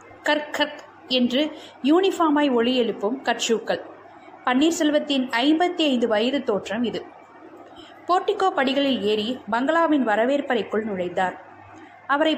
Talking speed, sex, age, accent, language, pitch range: 90 wpm, female, 20-39, native, Tamil, 225-325 Hz